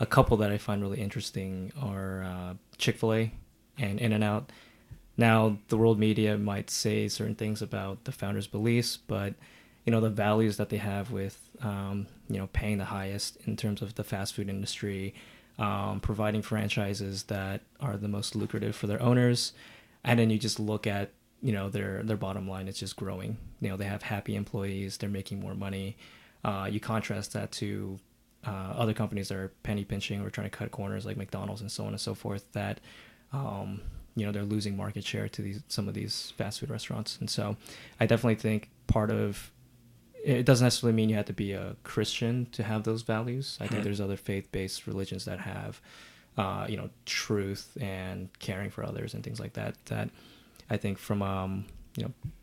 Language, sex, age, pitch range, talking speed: English, male, 20-39, 100-115 Hz, 190 wpm